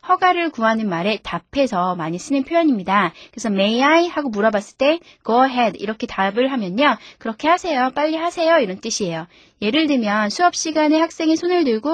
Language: Korean